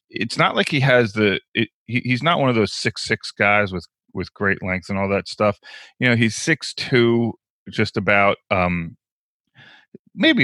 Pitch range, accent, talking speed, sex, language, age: 95-115 Hz, American, 180 wpm, male, English, 30-49